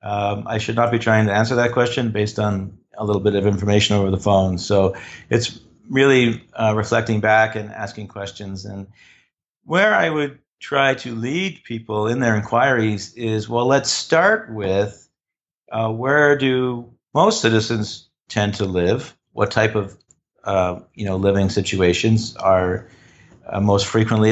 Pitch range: 105-120 Hz